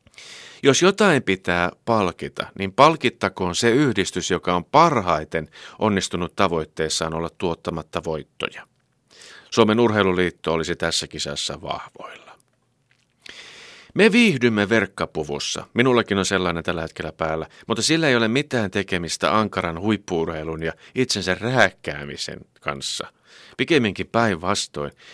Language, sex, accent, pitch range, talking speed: Finnish, male, native, 85-120 Hz, 105 wpm